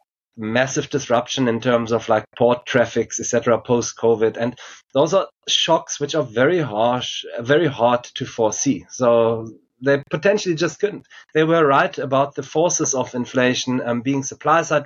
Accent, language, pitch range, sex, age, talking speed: German, English, 120-150 Hz, male, 30-49, 155 wpm